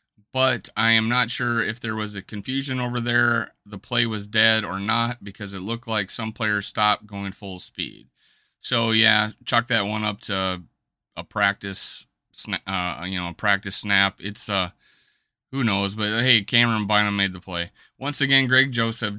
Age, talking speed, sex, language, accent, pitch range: 30-49, 180 wpm, male, English, American, 100-120 Hz